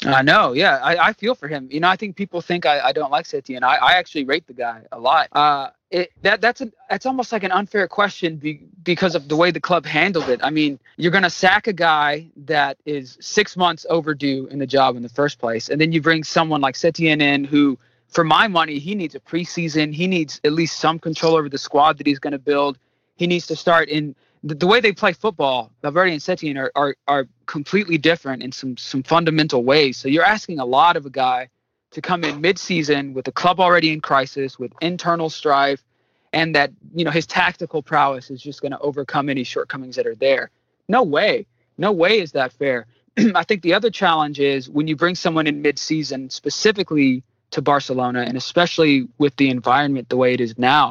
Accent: American